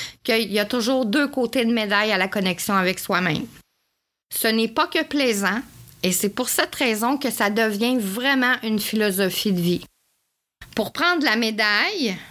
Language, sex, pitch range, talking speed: French, female, 200-265 Hz, 170 wpm